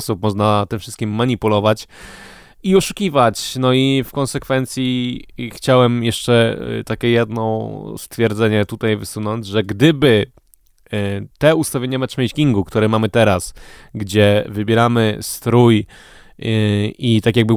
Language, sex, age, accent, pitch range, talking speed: Polish, male, 20-39, native, 110-135 Hz, 105 wpm